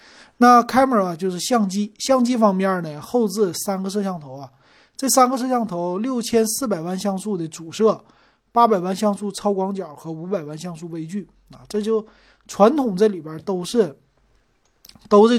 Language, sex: Chinese, male